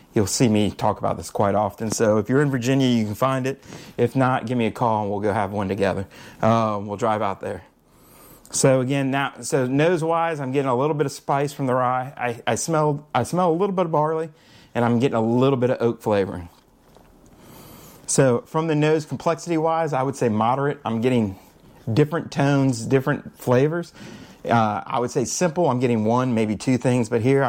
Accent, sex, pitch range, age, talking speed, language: American, male, 115-150 Hz, 30-49, 215 wpm, English